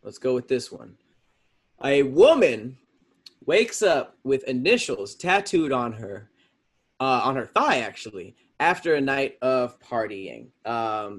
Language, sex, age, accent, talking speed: English, male, 20-39, American, 135 wpm